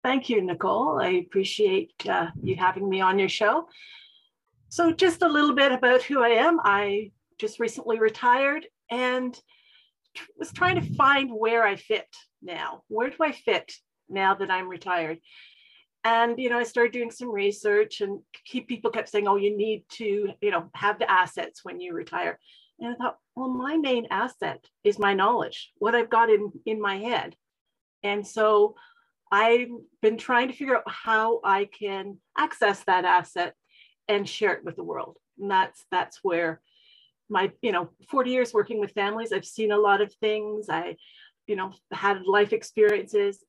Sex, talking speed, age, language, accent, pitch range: female, 180 wpm, 50-69, English, American, 195-265 Hz